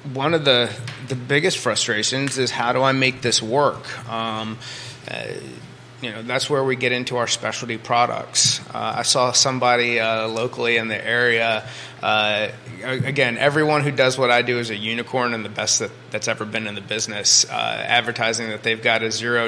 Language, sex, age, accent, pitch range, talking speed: English, male, 30-49, American, 120-135 Hz, 190 wpm